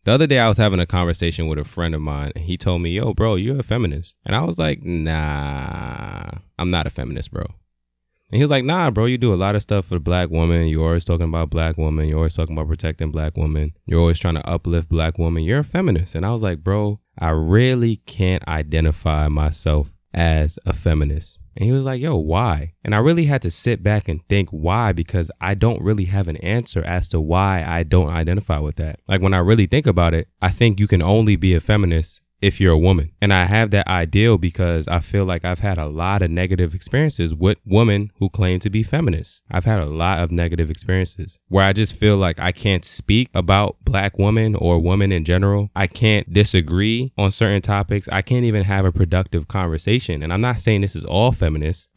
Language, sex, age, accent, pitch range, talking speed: English, male, 20-39, American, 85-105 Hz, 230 wpm